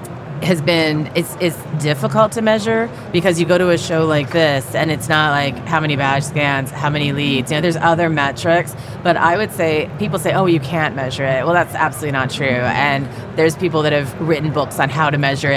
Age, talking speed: 30-49, 225 wpm